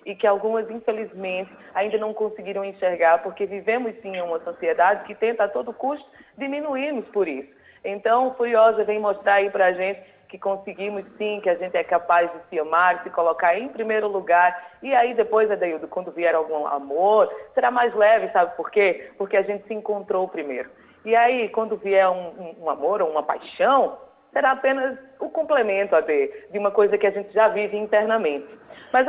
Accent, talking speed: Brazilian, 195 wpm